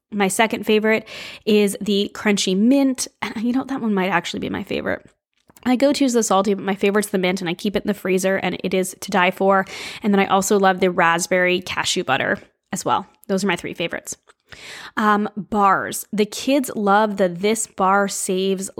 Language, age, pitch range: English, 20-39, 190-225 Hz